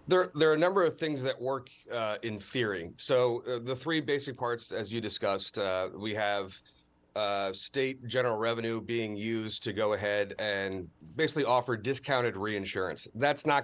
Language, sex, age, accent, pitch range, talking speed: English, male, 40-59, American, 100-125 Hz, 175 wpm